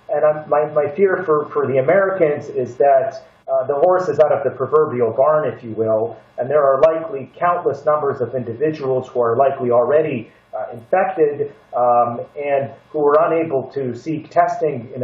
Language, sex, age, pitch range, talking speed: English, male, 40-59, 130-175 Hz, 160 wpm